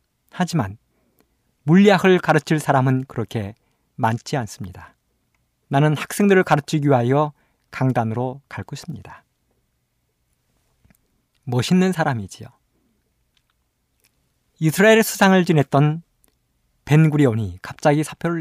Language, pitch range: Korean, 110-155 Hz